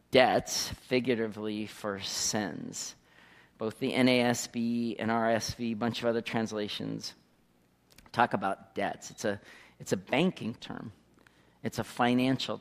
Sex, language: male, English